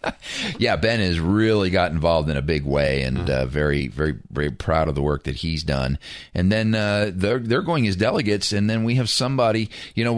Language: English